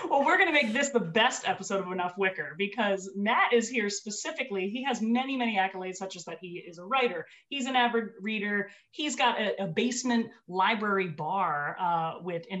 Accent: American